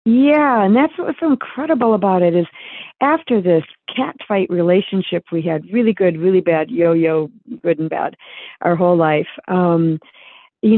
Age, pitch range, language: 50-69, 165-200 Hz, English